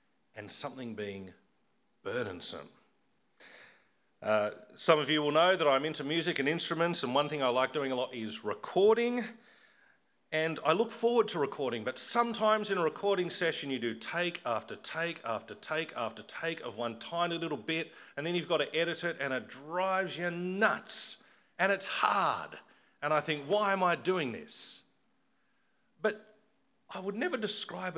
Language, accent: English, Australian